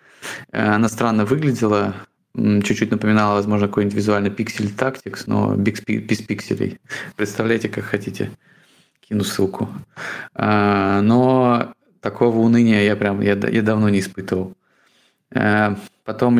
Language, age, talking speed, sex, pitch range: Russian, 20-39, 100 wpm, male, 100-120 Hz